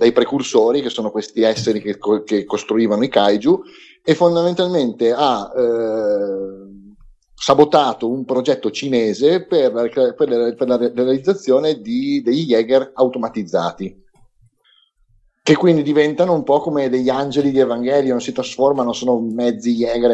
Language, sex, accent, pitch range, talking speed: Italian, male, native, 115-150 Hz, 130 wpm